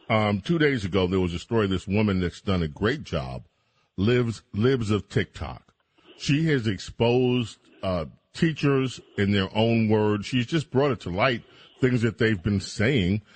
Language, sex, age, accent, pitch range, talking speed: English, male, 40-59, American, 100-125 Hz, 175 wpm